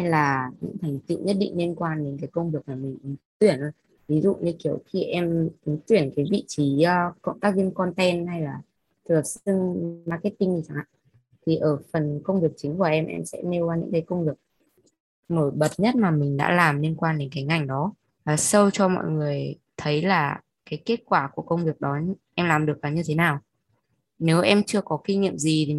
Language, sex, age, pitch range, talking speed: Vietnamese, female, 20-39, 150-190 Hz, 225 wpm